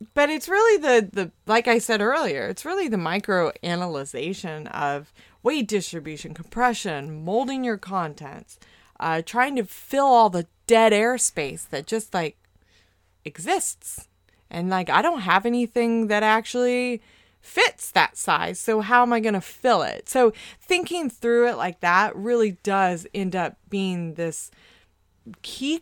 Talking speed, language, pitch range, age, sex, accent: 150 wpm, English, 170-230 Hz, 30-49, female, American